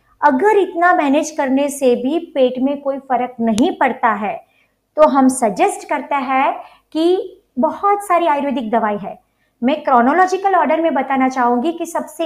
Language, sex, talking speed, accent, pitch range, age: Hindi, male, 155 wpm, native, 265-350 Hz, 50-69